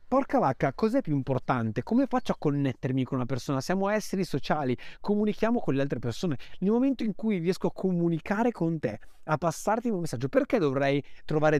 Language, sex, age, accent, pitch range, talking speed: Italian, male, 30-49, native, 125-185 Hz, 185 wpm